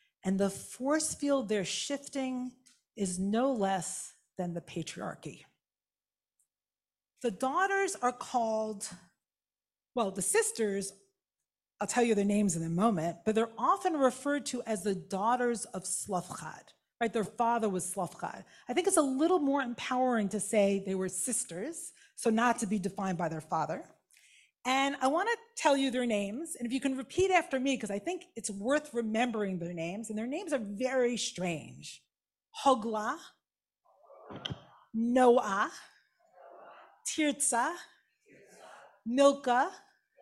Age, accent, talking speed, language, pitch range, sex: 40-59, American, 140 wpm, English, 200-275 Hz, female